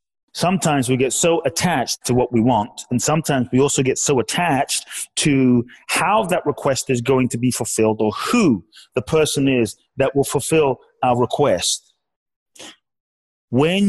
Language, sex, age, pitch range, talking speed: English, male, 30-49, 115-155 Hz, 155 wpm